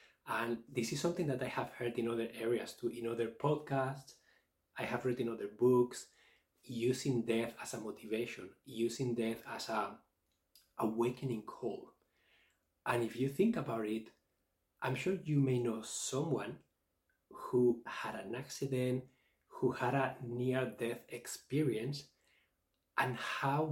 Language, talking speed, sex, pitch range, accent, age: English, 140 wpm, male, 115-130 Hz, Spanish, 20-39